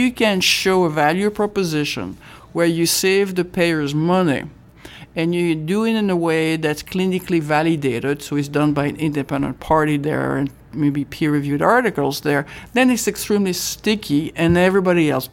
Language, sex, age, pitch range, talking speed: English, male, 60-79, 145-190 Hz, 165 wpm